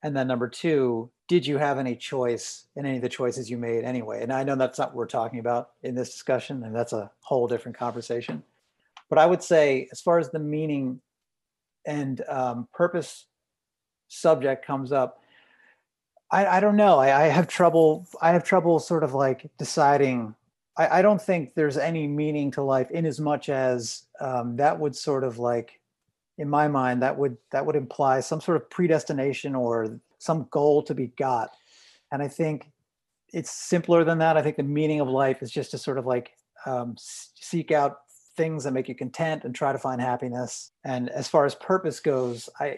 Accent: American